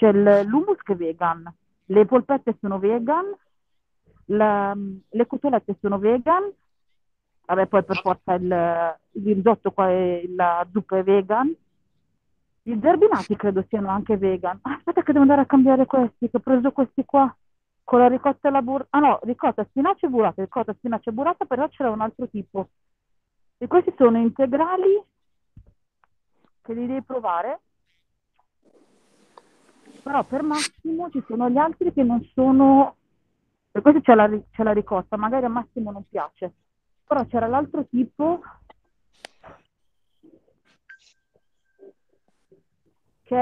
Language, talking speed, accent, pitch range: Italian, 140 wpm, native, 200-275 Hz